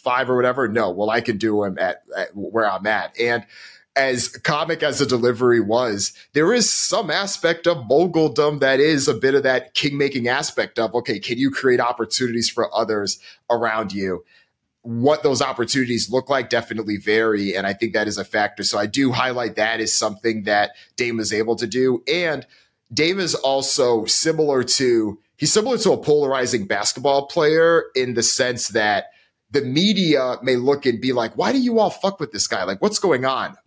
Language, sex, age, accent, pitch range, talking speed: English, male, 30-49, American, 115-145 Hz, 190 wpm